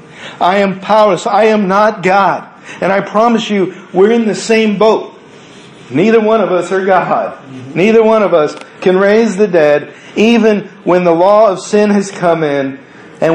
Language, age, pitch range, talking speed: English, 50-69, 190-230 Hz, 180 wpm